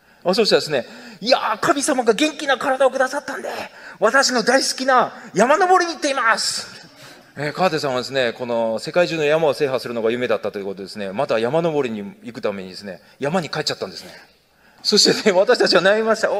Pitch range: 145-220 Hz